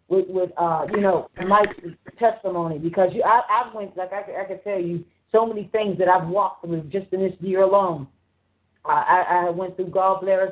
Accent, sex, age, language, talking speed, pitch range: American, female, 40-59, English, 210 wpm, 185-225 Hz